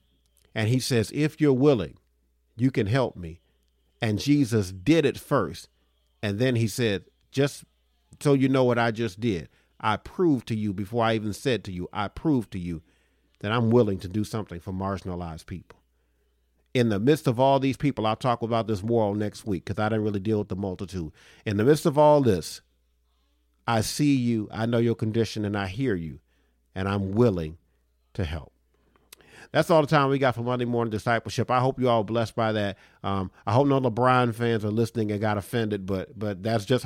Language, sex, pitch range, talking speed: English, male, 100-120 Hz, 205 wpm